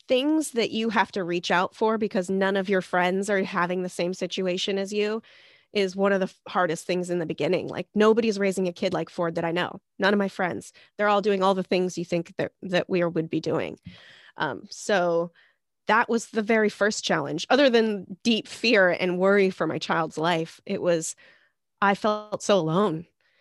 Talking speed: 210 wpm